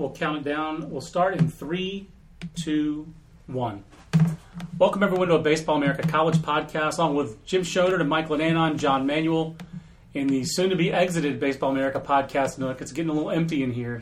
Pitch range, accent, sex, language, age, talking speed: 140-175 Hz, American, male, English, 30-49, 180 wpm